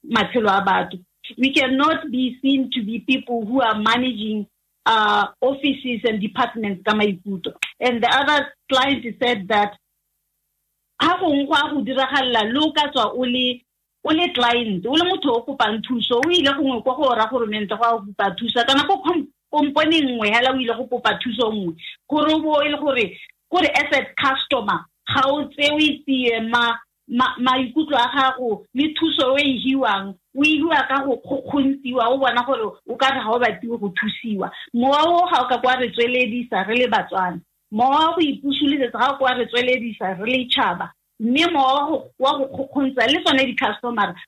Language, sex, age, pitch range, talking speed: English, female, 40-59, 230-285 Hz, 55 wpm